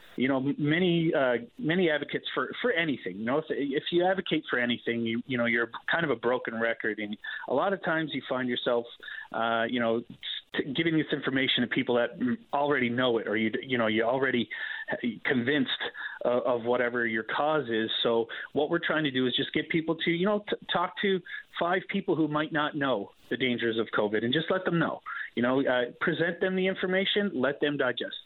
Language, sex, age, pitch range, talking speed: English, male, 30-49, 120-155 Hz, 215 wpm